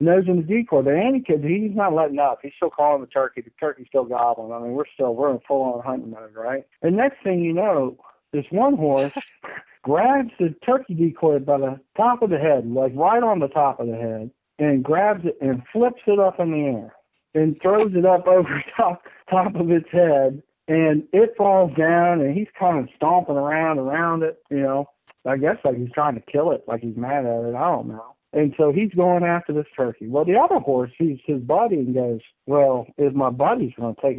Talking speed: 225 wpm